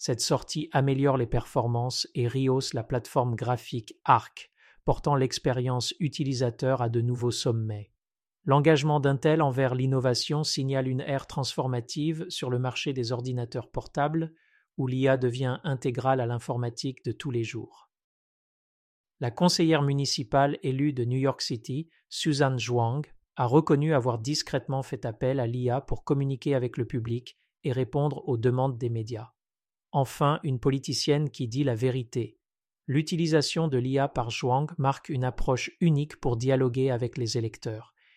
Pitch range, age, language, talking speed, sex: 125-145 Hz, 50-69, French, 145 wpm, male